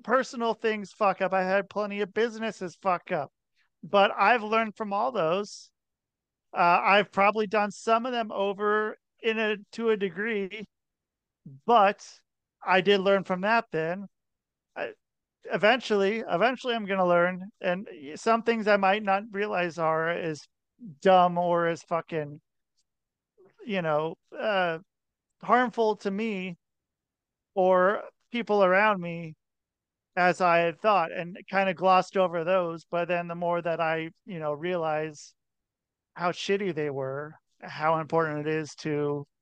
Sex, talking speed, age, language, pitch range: male, 145 wpm, 40-59, English, 165-205 Hz